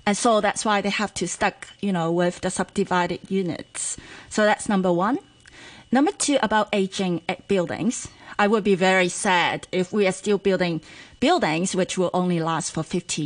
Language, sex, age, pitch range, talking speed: English, female, 30-49, 180-220 Hz, 185 wpm